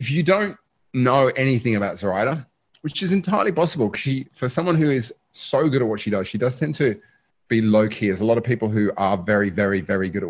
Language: English